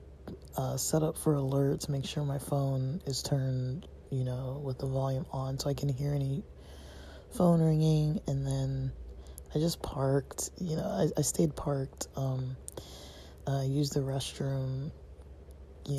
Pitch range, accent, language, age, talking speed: 90-145 Hz, American, English, 20-39, 155 wpm